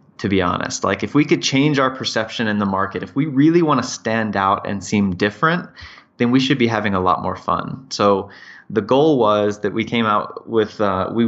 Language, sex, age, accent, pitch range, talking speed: English, male, 20-39, American, 100-120 Hz, 230 wpm